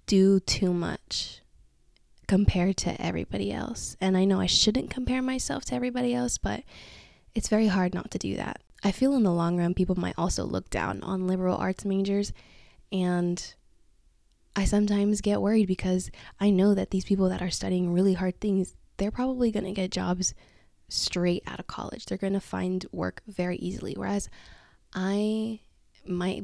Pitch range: 175-200 Hz